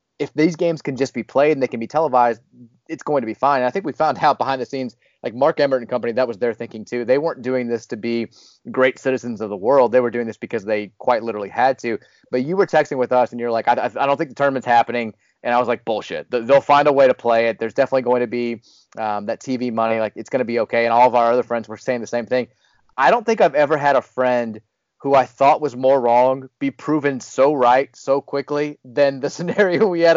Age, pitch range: 30-49, 120-150 Hz